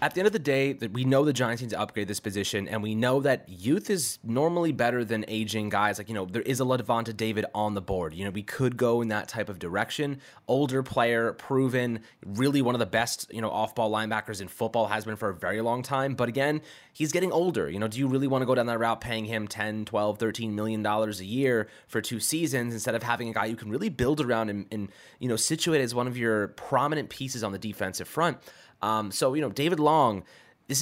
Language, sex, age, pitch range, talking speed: English, male, 20-39, 105-130 Hz, 250 wpm